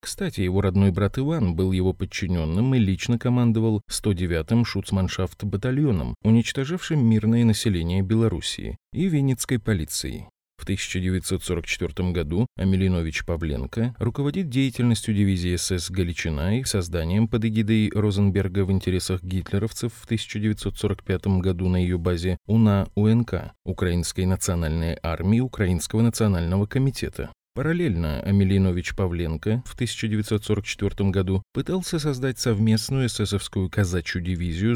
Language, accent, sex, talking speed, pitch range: Russian, native, male, 110 wpm, 90-115 Hz